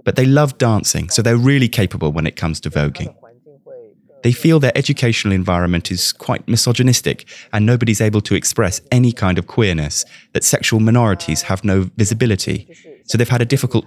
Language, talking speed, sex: English, 175 wpm, male